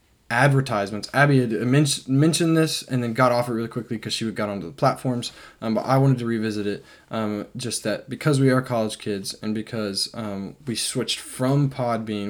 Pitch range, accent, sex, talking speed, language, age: 105-125 Hz, American, male, 200 wpm, English, 10-29